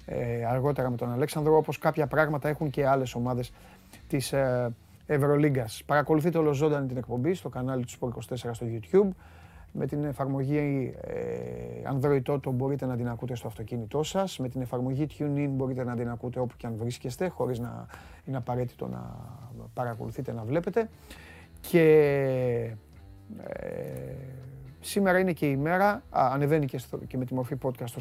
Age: 30-49